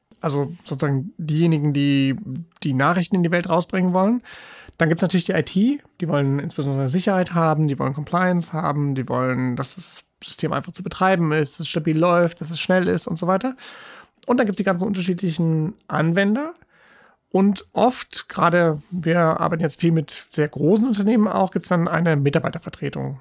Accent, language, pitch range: German, German, 150-185 Hz